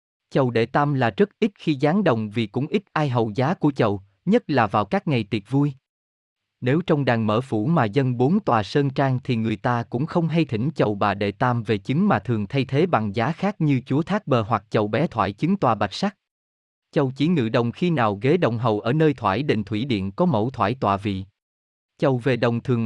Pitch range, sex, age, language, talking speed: 110-155 Hz, male, 20-39, Vietnamese, 240 wpm